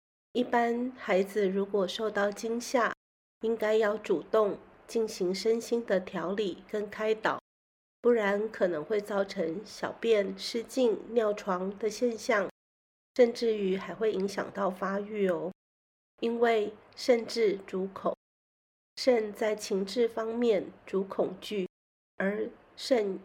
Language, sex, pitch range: Chinese, female, 195-235 Hz